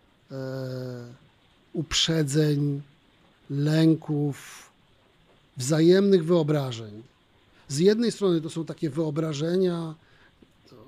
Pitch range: 145-180 Hz